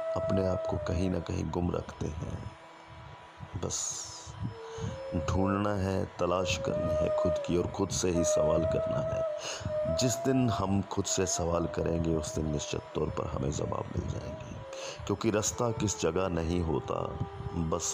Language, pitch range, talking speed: Hindi, 85-125 Hz, 155 wpm